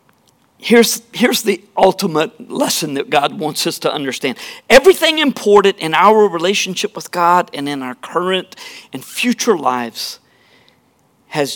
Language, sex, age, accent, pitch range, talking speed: English, male, 50-69, American, 170-230 Hz, 135 wpm